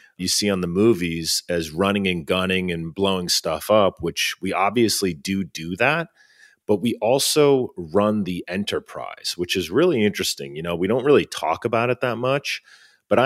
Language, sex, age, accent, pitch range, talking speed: English, male, 30-49, American, 85-105 Hz, 180 wpm